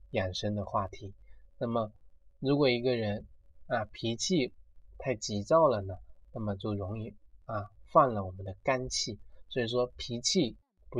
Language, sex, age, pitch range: Chinese, male, 20-39, 100-125 Hz